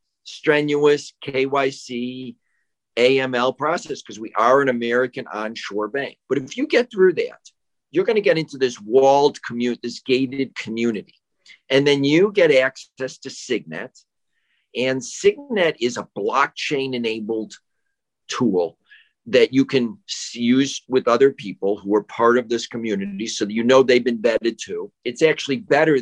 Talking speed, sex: 150 wpm, male